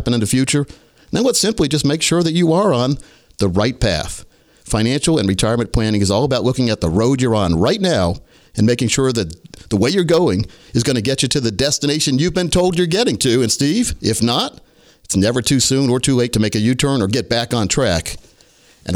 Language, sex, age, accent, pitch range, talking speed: English, male, 50-69, American, 110-145 Hz, 235 wpm